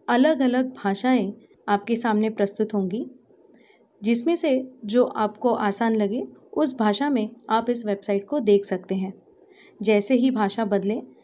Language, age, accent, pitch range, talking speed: Tamil, 30-49, native, 215-270 Hz, 145 wpm